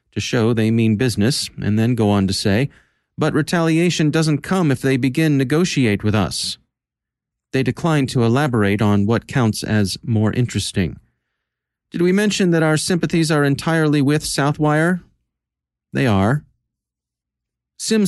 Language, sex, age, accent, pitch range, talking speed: English, male, 40-59, American, 115-150 Hz, 145 wpm